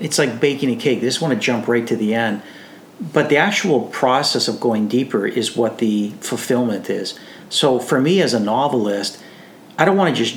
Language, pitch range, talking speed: English, 120-145 Hz, 215 wpm